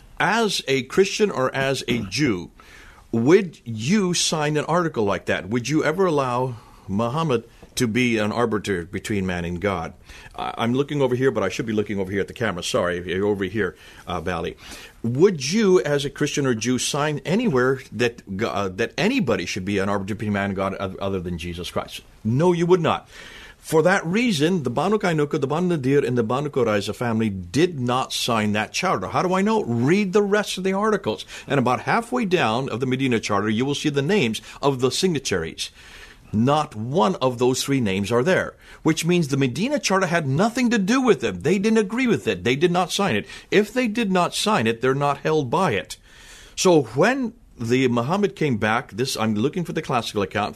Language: English